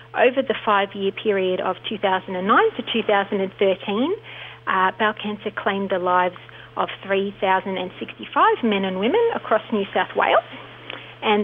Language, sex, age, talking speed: English, female, 40-59, 125 wpm